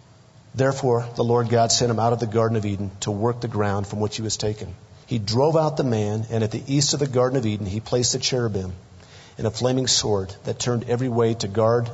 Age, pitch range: 50-69, 105-125 Hz